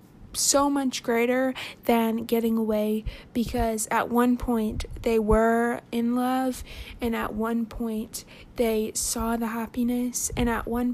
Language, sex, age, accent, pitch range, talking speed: English, female, 20-39, American, 220-245 Hz, 135 wpm